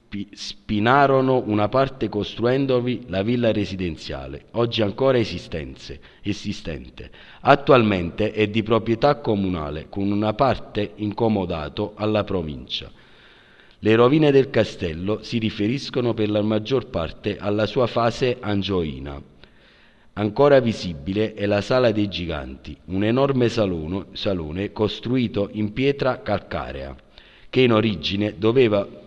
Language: Italian